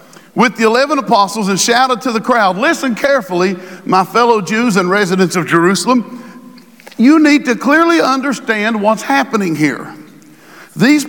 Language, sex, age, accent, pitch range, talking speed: English, male, 50-69, American, 205-265 Hz, 145 wpm